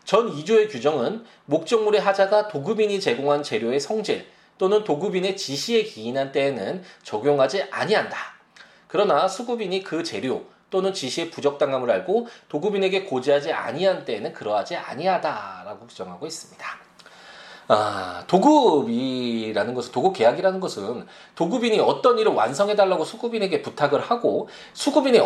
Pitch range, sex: 145-230 Hz, male